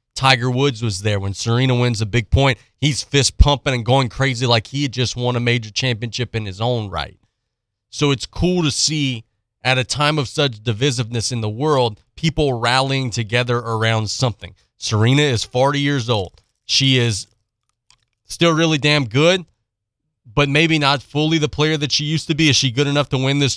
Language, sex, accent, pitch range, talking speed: English, male, American, 110-135 Hz, 195 wpm